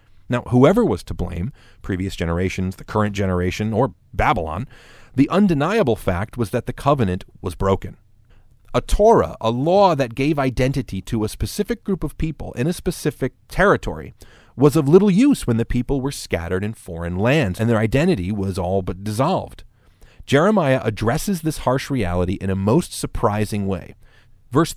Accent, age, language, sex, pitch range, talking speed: American, 30-49, English, male, 100-140 Hz, 165 wpm